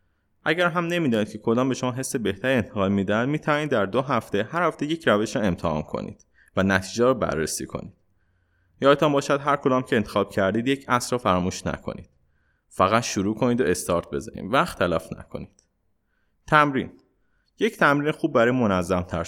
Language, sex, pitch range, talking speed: Persian, male, 95-130 Hz, 170 wpm